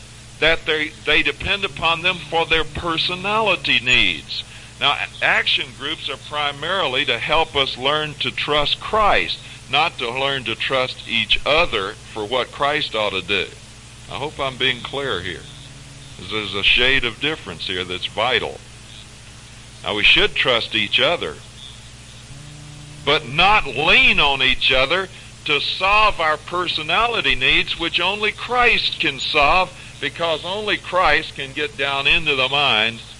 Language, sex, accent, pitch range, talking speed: English, male, American, 115-150 Hz, 145 wpm